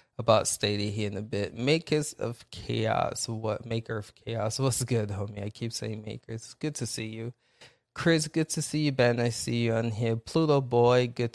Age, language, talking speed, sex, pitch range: 20-39, English, 200 wpm, male, 115-130 Hz